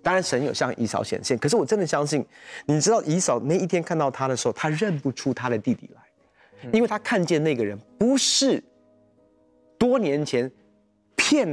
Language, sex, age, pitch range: Chinese, male, 30-49, 125-195 Hz